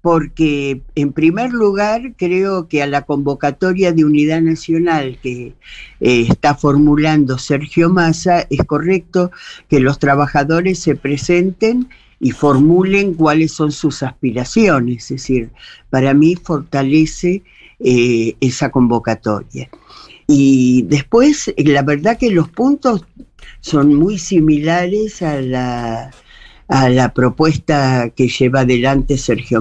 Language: Spanish